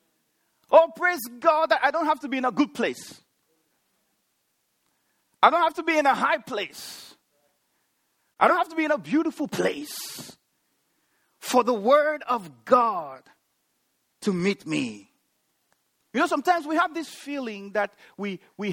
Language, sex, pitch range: English, male, 220-295 Hz